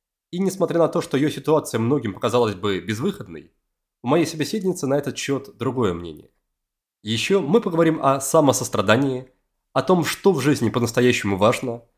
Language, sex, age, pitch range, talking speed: Russian, male, 20-39, 110-145 Hz, 155 wpm